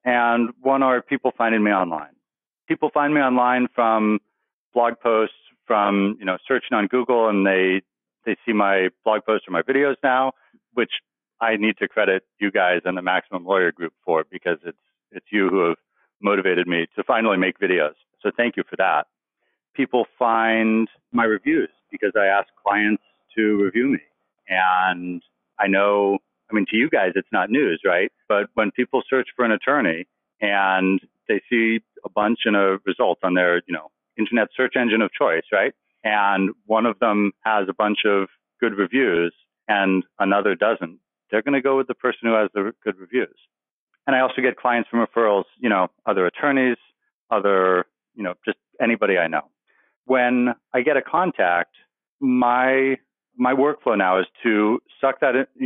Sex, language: male, English